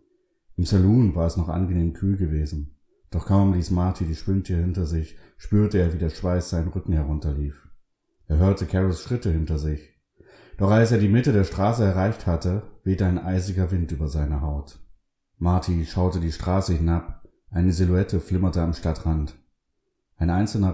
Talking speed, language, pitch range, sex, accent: 170 wpm, German, 80-95 Hz, male, German